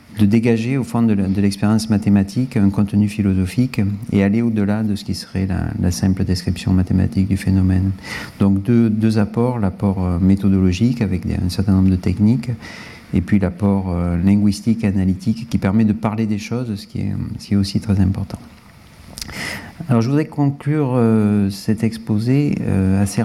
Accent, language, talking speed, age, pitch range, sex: French, French, 165 wpm, 40-59, 100-125 Hz, male